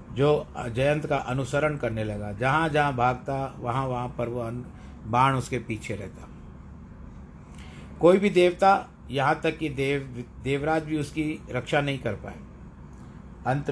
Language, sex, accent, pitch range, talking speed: Hindi, male, native, 100-145 Hz, 140 wpm